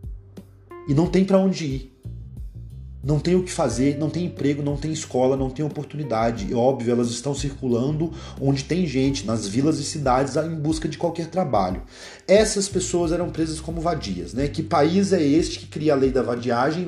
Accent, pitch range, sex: Brazilian, 120-165 Hz, male